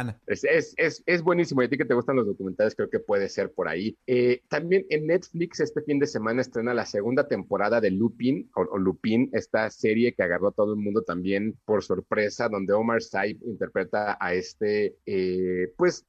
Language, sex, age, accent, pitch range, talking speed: Spanish, male, 30-49, Mexican, 105-140 Hz, 205 wpm